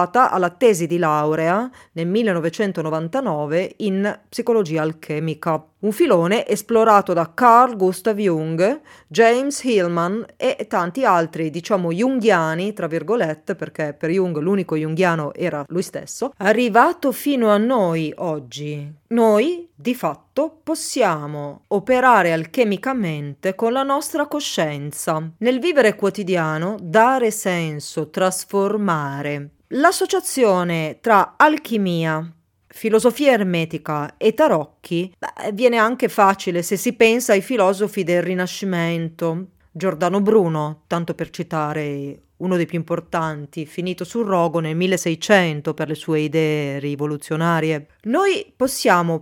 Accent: native